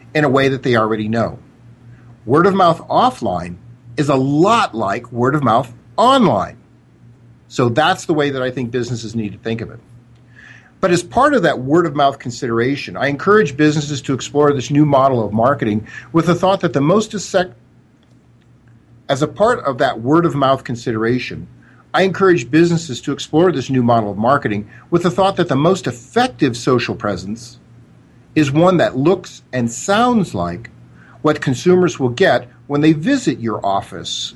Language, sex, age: English, male, 50-69